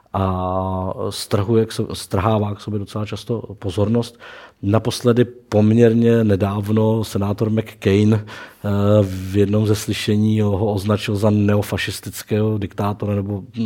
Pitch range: 100-110 Hz